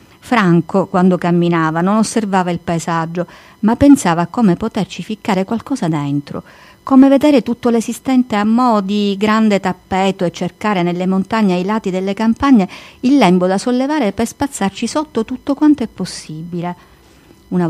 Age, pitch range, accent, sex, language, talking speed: 50-69, 175-225 Hz, native, female, Italian, 150 wpm